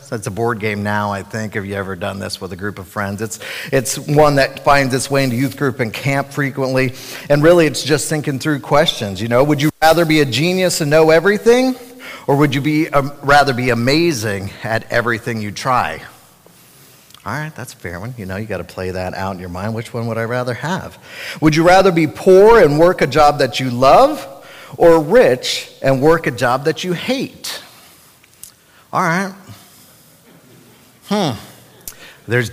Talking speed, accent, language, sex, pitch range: 200 wpm, American, English, male, 115-165 Hz